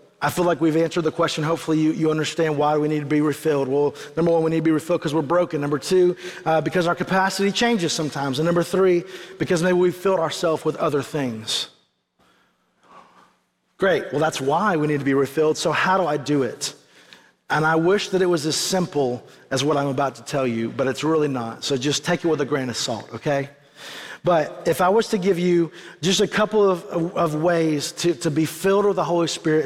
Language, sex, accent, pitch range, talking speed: English, male, American, 145-180 Hz, 225 wpm